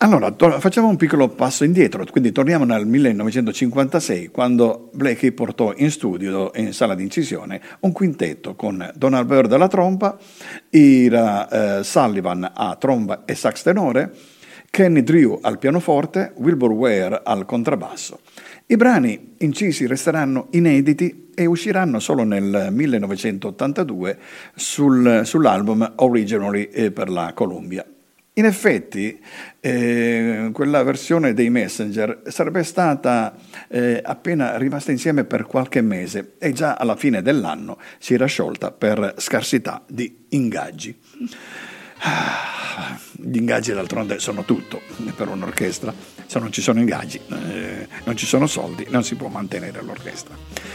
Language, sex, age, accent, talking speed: Italian, male, 50-69, native, 130 wpm